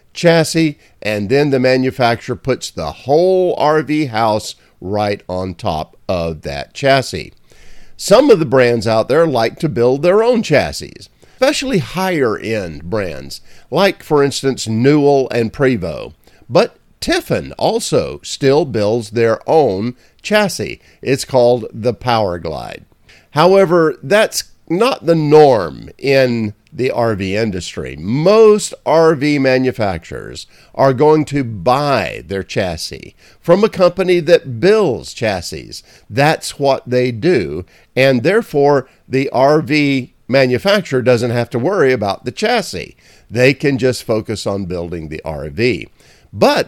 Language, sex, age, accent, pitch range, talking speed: English, male, 50-69, American, 115-155 Hz, 130 wpm